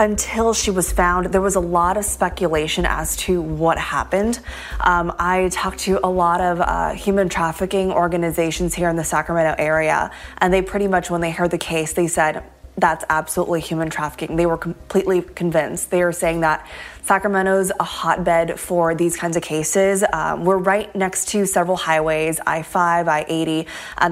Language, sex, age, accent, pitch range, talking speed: English, female, 20-39, American, 165-190 Hz, 175 wpm